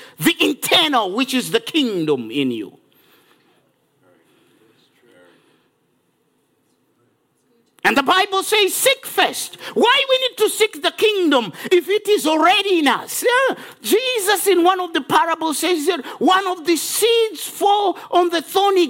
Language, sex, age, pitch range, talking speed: English, male, 50-69, 245-370 Hz, 135 wpm